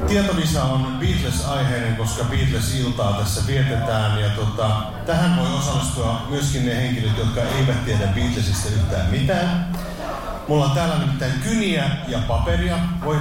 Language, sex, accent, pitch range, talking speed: Finnish, male, native, 100-135 Hz, 130 wpm